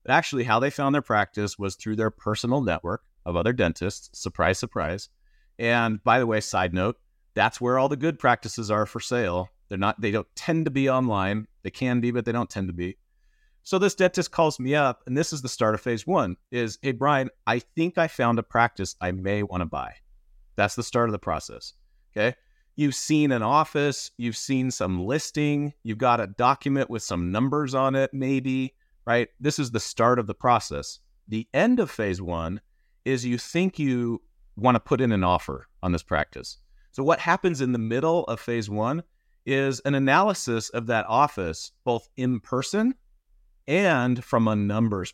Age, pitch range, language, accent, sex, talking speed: 30-49, 105-145 Hz, English, American, male, 200 wpm